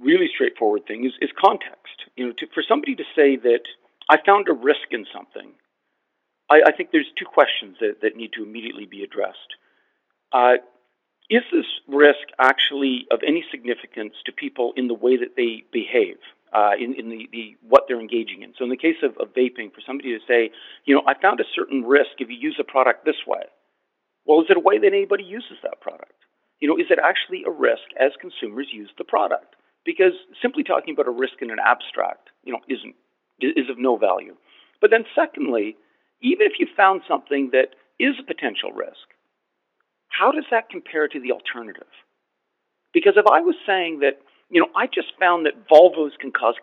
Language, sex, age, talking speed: English, male, 50-69, 200 wpm